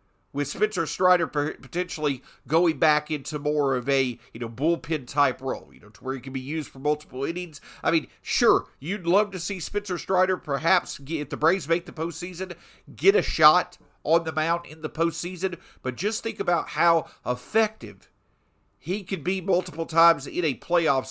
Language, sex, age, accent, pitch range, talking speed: English, male, 50-69, American, 135-190 Hz, 185 wpm